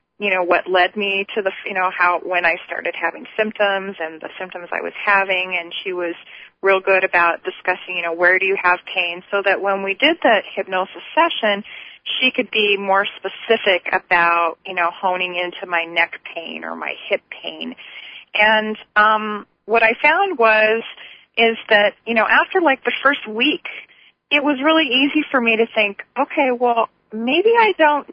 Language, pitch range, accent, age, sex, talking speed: English, 185-275 Hz, American, 30-49, female, 190 wpm